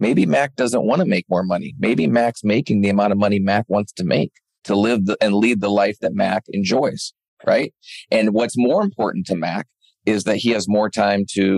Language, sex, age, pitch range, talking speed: English, male, 40-59, 100-120 Hz, 220 wpm